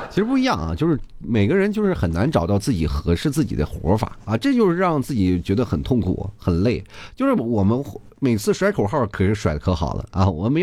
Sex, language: male, Chinese